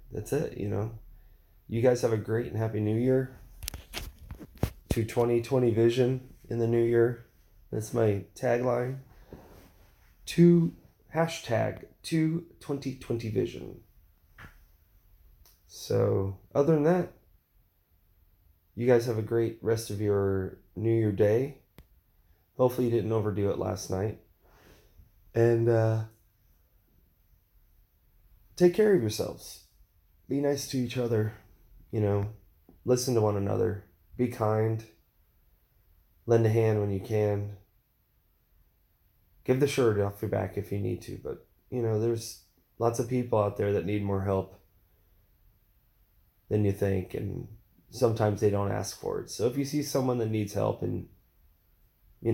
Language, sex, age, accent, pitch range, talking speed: English, male, 20-39, American, 95-115 Hz, 135 wpm